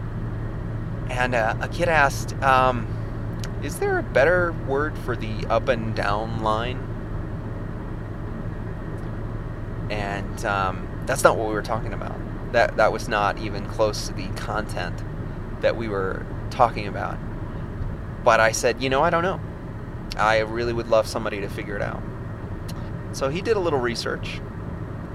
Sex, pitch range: male, 105-115 Hz